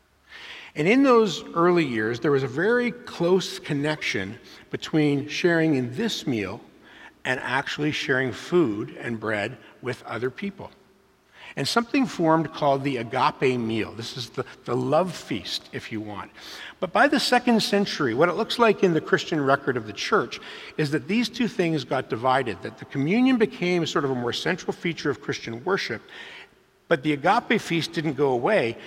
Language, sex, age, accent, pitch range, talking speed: English, male, 50-69, American, 130-190 Hz, 175 wpm